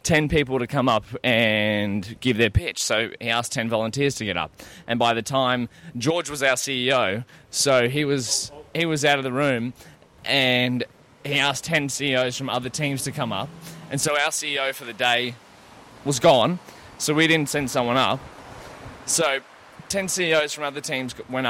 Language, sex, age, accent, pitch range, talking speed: English, male, 20-39, Australian, 120-140 Hz, 185 wpm